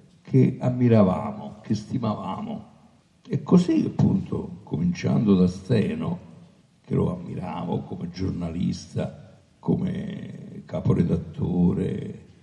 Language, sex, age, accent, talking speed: Italian, male, 60-79, native, 80 wpm